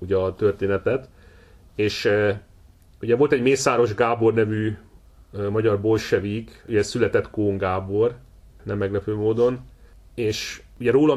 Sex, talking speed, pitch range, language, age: male, 130 wpm, 95-120 Hz, Hungarian, 30-49